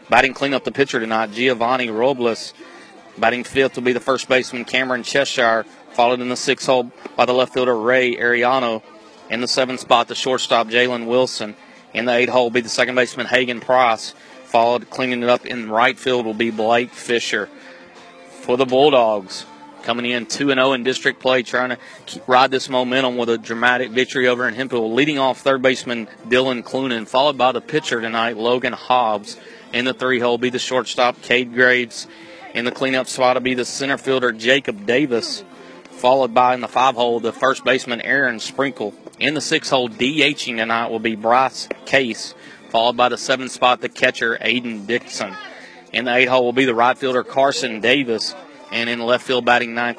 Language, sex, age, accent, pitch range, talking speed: English, male, 30-49, American, 120-130 Hz, 185 wpm